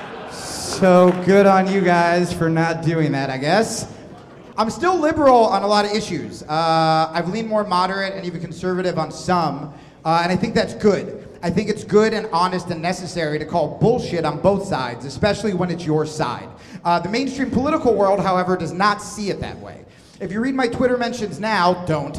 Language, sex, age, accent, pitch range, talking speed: English, male, 30-49, American, 160-210 Hz, 200 wpm